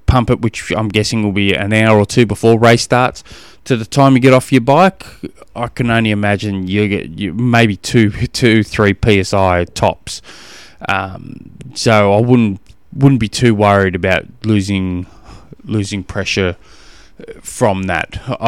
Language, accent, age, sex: English, Australian, 20-39, male